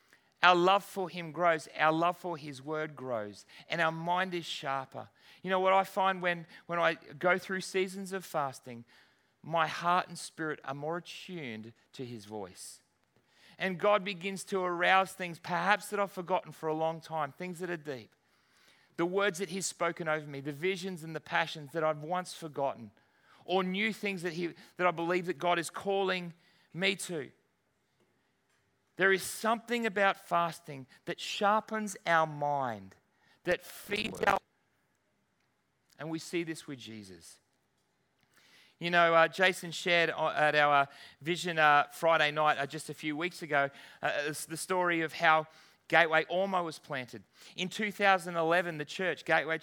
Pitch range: 150-185 Hz